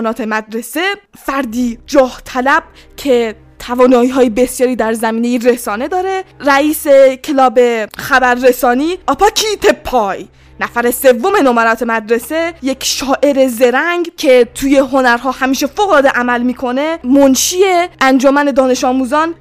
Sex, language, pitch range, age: female, Persian, 245-285 Hz, 20-39